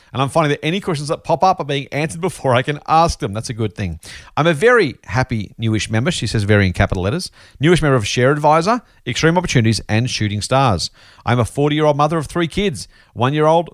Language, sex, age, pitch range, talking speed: English, male, 40-59, 110-155 Hz, 225 wpm